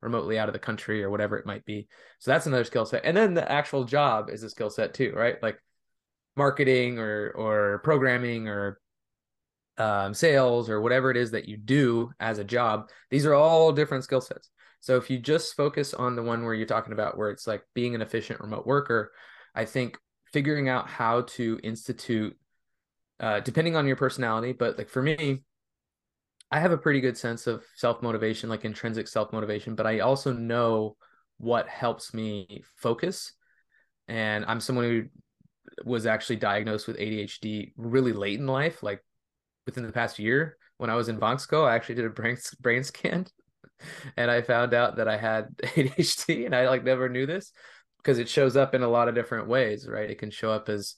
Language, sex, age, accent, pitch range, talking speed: English, male, 20-39, American, 110-130 Hz, 195 wpm